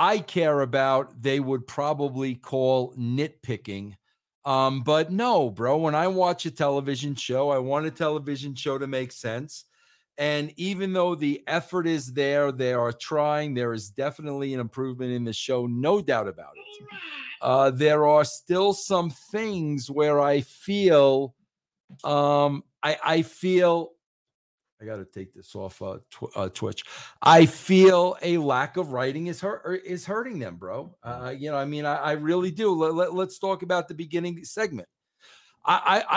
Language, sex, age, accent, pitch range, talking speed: English, male, 50-69, American, 135-175 Hz, 170 wpm